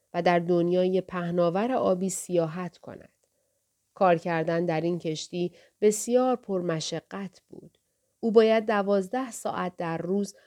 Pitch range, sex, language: 170-225 Hz, female, Persian